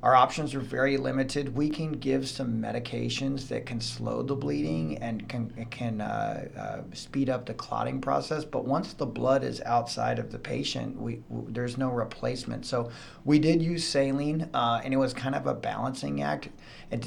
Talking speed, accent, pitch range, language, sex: 185 wpm, American, 115-135 Hz, English, male